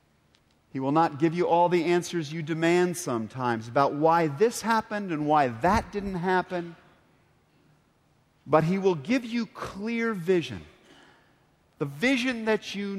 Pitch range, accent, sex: 130-190 Hz, American, male